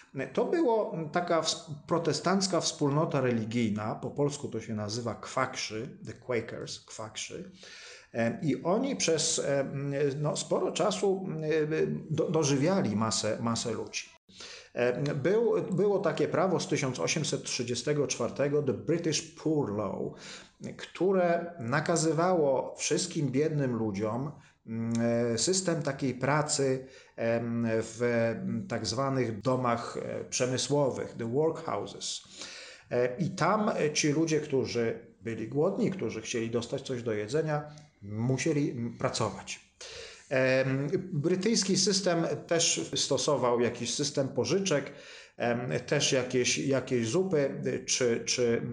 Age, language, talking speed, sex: 40-59, Polish, 95 wpm, male